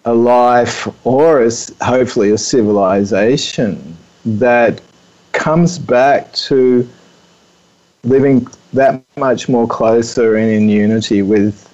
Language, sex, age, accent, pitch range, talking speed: English, male, 40-59, Australian, 110-125 Hz, 100 wpm